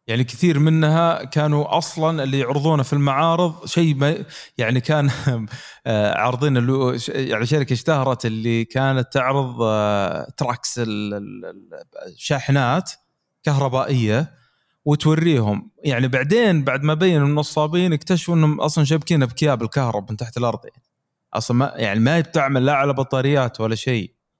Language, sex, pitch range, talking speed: Arabic, male, 125-165 Hz, 120 wpm